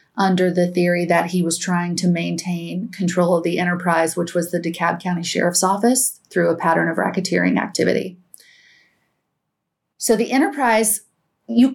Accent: American